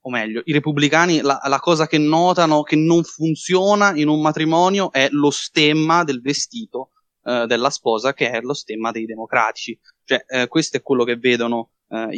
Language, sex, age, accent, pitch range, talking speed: Italian, male, 20-39, native, 120-175 Hz, 180 wpm